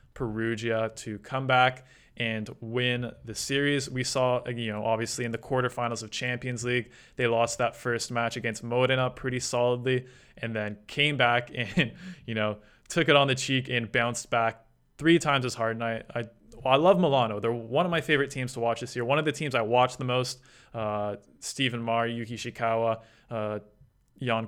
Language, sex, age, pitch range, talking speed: English, male, 20-39, 115-140 Hz, 190 wpm